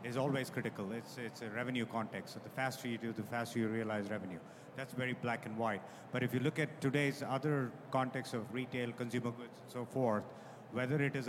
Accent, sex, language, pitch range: Indian, male, English, 120-145 Hz